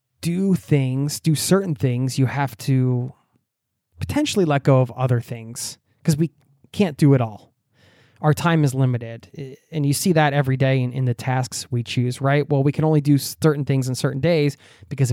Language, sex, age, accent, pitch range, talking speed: English, male, 20-39, American, 125-155 Hz, 190 wpm